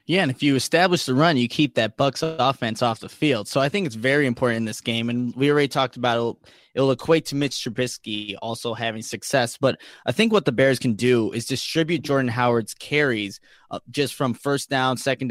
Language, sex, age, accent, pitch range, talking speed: English, male, 20-39, American, 120-160 Hz, 220 wpm